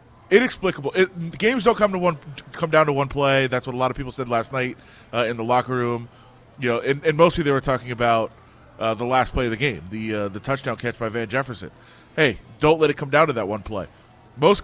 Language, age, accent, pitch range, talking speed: English, 20-39, American, 125-200 Hz, 250 wpm